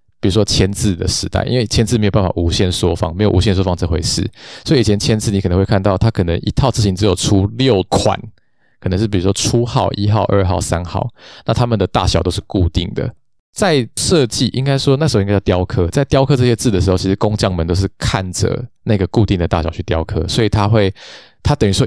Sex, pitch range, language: male, 90-110 Hz, Chinese